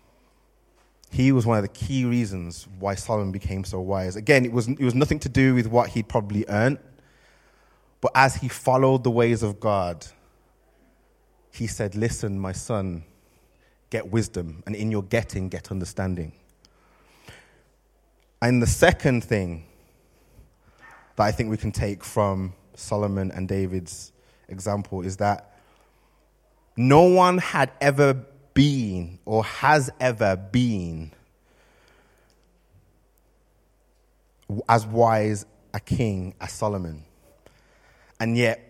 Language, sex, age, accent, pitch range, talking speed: English, male, 20-39, British, 95-125 Hz, 125 wpm